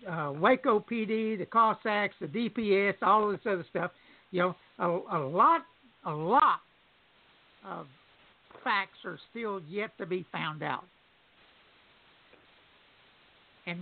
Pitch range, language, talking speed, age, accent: 185-235 Hz, English, 120 wpm, 60-79, American